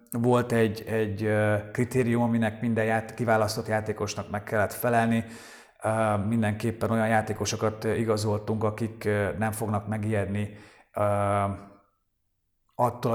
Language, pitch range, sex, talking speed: Hungarian, 110-120 Hz, male, 95 wpm